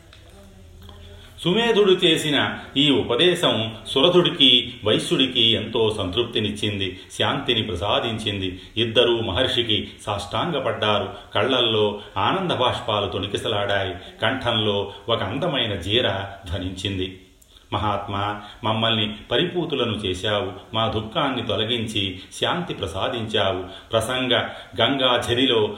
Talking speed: 80 wpm